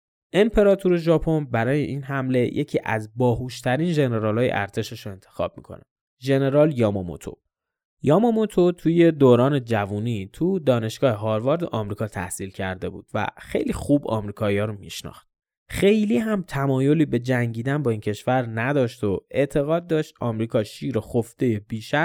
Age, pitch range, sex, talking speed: 20-39, 110-155 Hz, male, 135 wpm